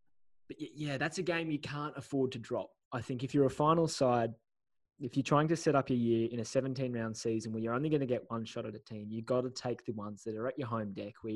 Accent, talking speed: Australian, 285 wpm